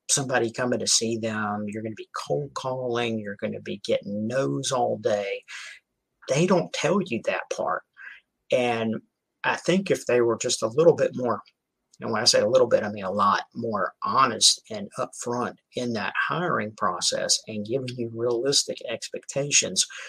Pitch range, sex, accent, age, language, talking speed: 110-165 Hz, male, American, 50-69, English, 180 wpm